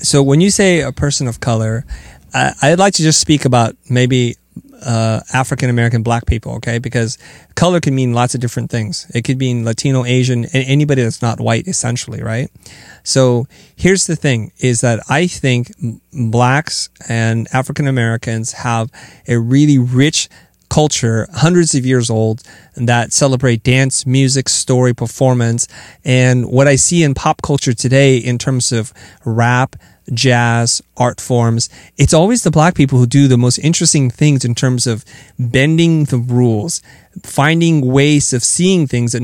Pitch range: 120-145 Hz